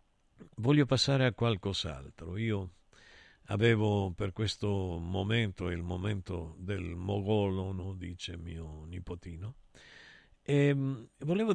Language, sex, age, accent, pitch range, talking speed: Italian, male, 50-69, native, 95-130 Hz, 95 wpm